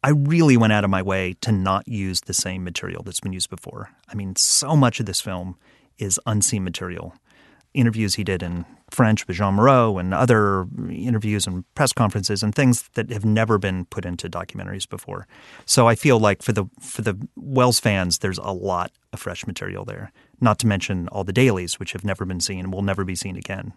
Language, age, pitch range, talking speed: English, 30-49, 95-115 Hz, 215 wpm